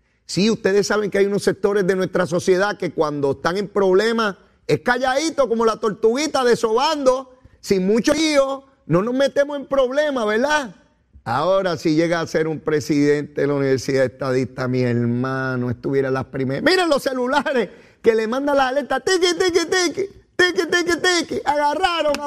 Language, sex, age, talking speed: Spanish, male, 30-49, 165 wpm